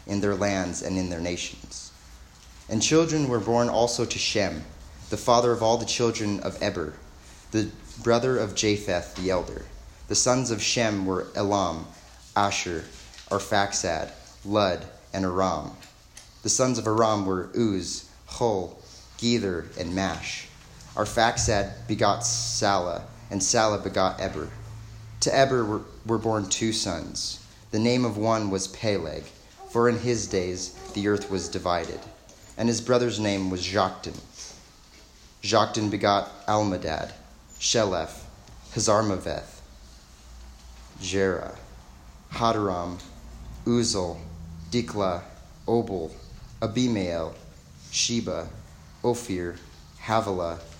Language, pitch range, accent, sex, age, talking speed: English, 85-110 Hz, American, male, 30-49, 115 wpm